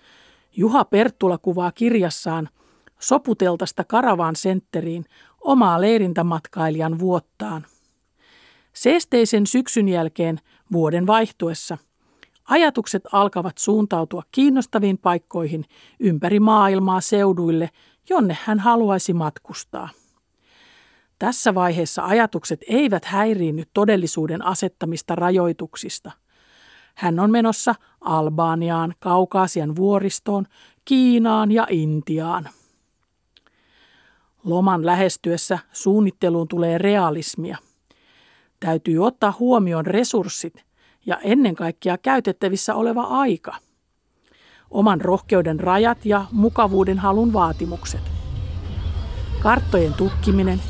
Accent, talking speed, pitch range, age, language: native, 80 wpm, 165-215 Hz, 50-69, Finnish